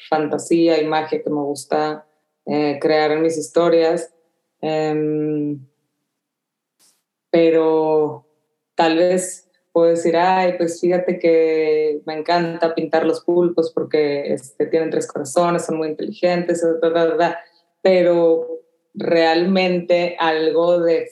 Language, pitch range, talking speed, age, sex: Spanish, 155-170 Hz, 115 wpm, 20-39, female